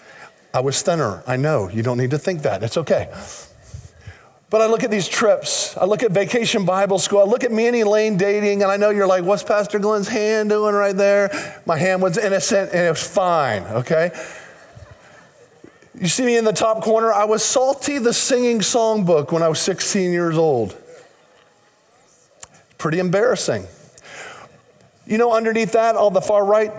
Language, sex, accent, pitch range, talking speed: English, male, American, 170-225 Hz, 185 wpm